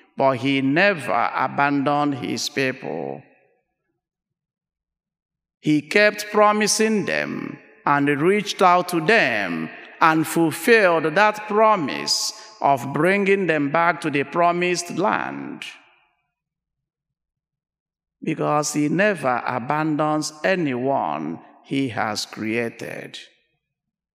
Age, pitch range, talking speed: 50-69, 145-195 Hz, 85 wpm